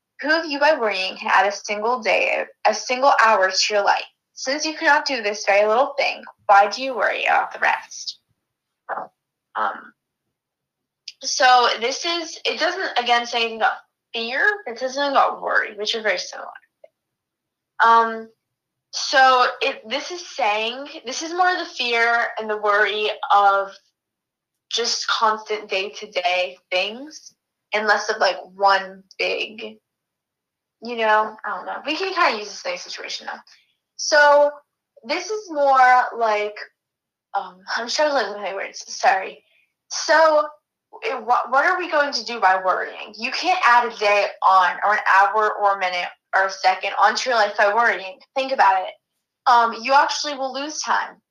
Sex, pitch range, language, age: female, 205-285 Hz, English, 10-29